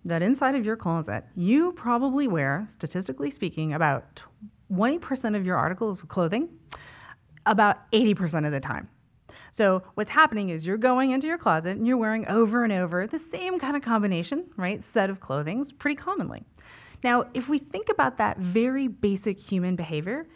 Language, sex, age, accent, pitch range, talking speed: English, female, 30-49, American, 175-250 Hz, 170 wpm